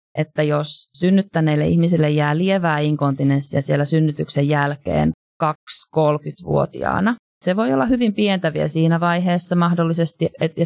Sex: female